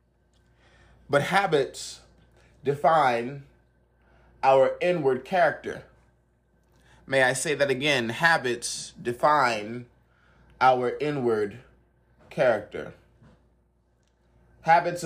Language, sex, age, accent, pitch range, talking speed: English, male, 30-49, American, 120-160 Hz, 70 wpm